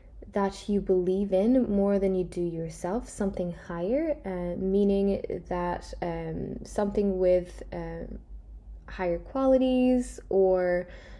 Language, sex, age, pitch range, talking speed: English, female, 10-29, 175-245 Hz, 115 wpm